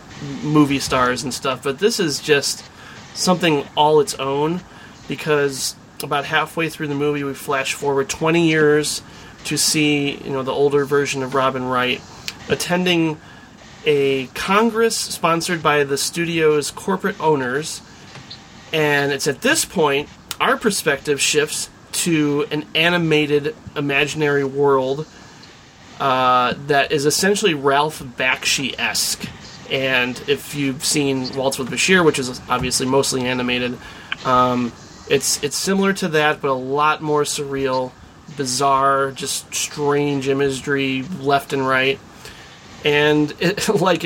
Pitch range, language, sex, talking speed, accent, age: 135-155 Hz, English, male, 130 wpm, American, 30-49